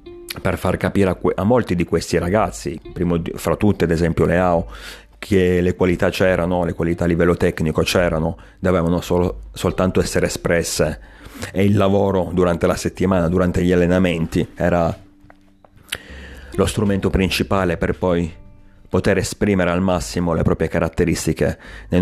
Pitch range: 85-95 Hz